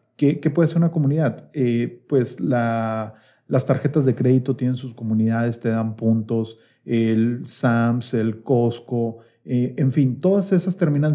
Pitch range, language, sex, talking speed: 120-140 Hz, Spanish, male, 145 wpm